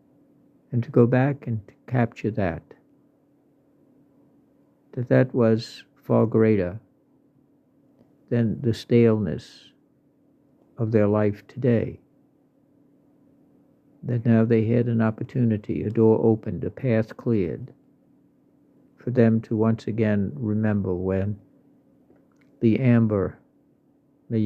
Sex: male